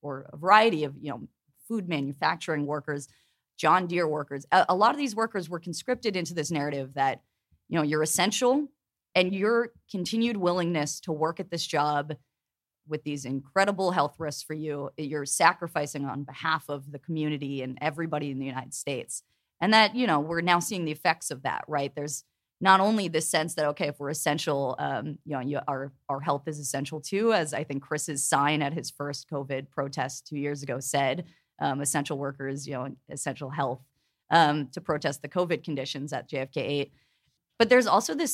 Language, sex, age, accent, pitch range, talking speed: English, female, 30-49, American, 140-175 Hz, 195 wpm